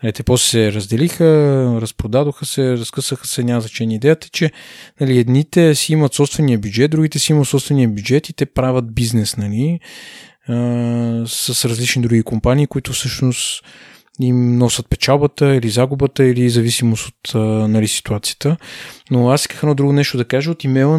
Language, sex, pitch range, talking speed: Bulgarian, male, 115-140 Hz, 160 wpm